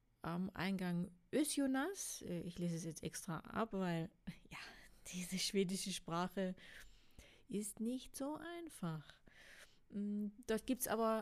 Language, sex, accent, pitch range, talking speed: German, female, German, 175-215 Hz, 120 wpm